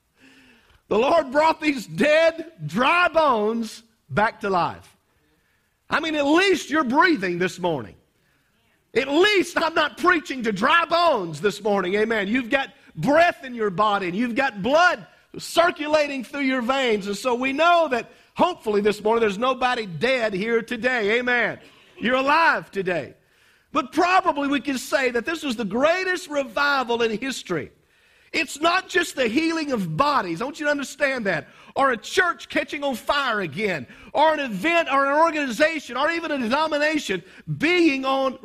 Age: 50-69